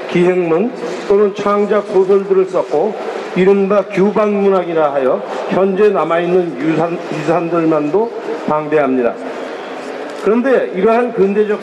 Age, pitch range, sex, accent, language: 40-59, 175-205 Hz, male, native, Korean